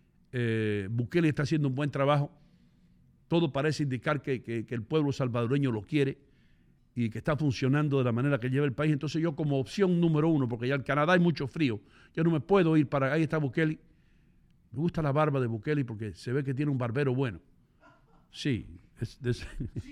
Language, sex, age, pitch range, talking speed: English, male, 60-79, 125-155 Hz, 200 wpm